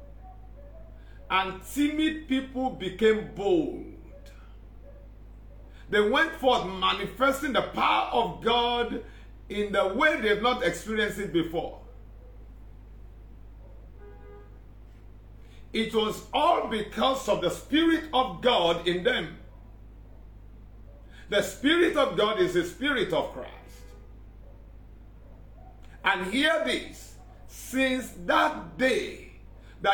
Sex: male